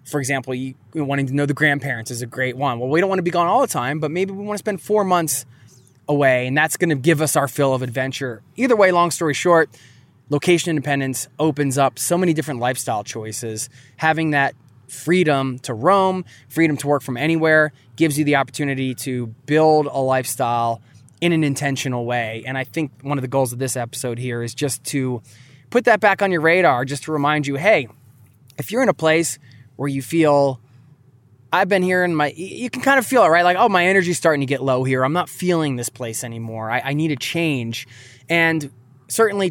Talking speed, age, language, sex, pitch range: 215 wpm, 20-39, English, male, 125-165 Hz